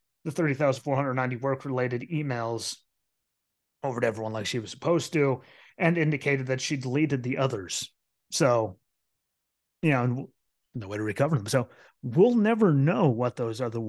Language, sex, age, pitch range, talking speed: English, male, 30-49, 120-155 Hz, 145 wpm